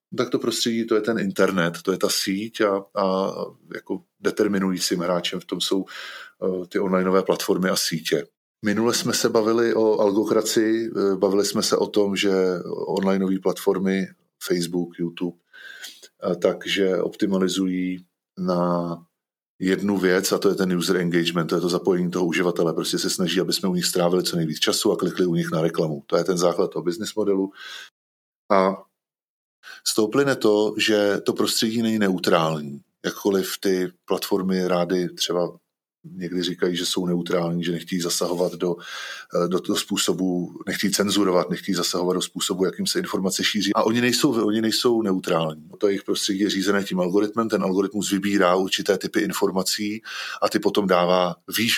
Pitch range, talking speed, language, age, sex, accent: 90-105 Hz, 160 wpm, Czech, 20-39, male, native